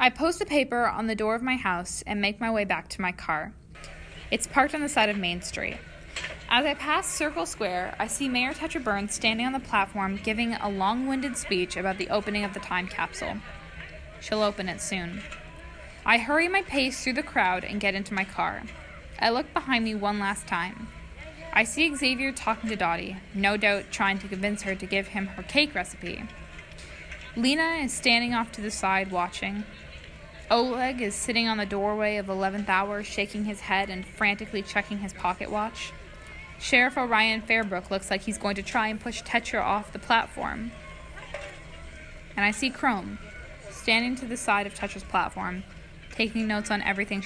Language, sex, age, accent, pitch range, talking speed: English, female, 10-29, American, 195-235 Hz, 190 wpm